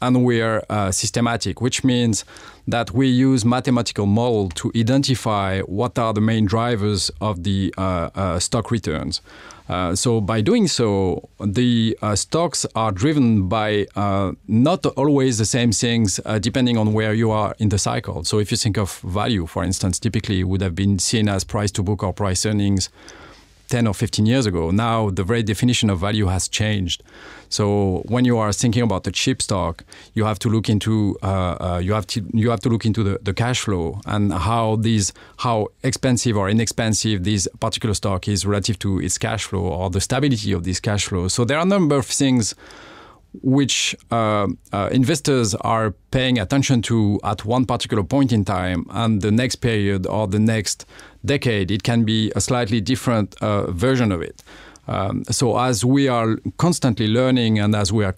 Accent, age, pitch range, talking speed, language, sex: French, 40-59, 100-120 Hz, 190 wpm, English, male